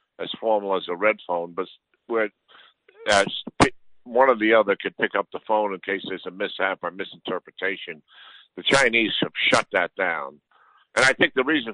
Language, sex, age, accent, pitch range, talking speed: English, male, 60-79, American, 90-110 Hz, 180 wpm